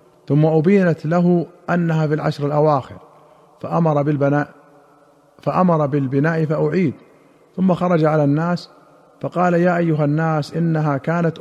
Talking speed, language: 115 wpm, Arabic